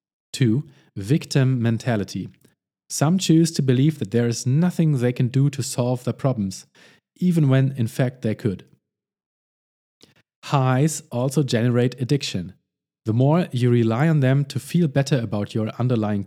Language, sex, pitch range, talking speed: English, male, 115-150 Hz, 150 wpm